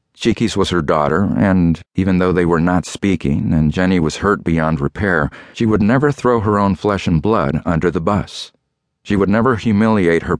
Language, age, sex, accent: English, 50-69, male, American